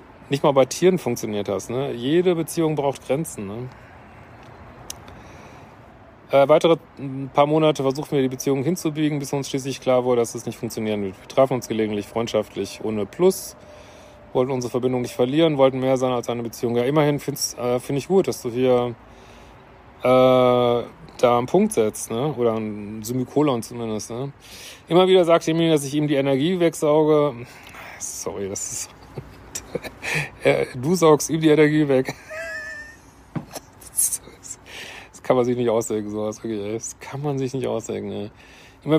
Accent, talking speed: German, 165 wpm